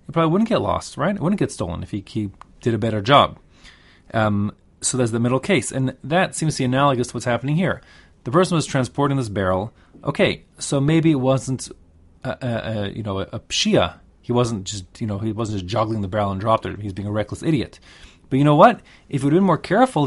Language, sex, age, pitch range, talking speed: English, male, 30-49, 100-140 Hz, 235 wpm